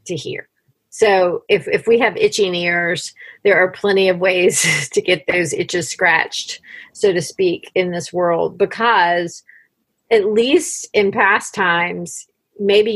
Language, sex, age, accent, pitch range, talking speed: English, female, 40-59, American, 175-225 Hz, 150 wpm